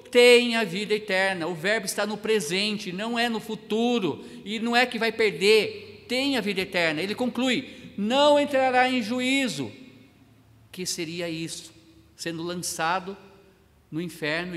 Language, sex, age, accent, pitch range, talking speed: Portuguese, male, 50-69, Brazilian, 170-235 Hz, 150 wpm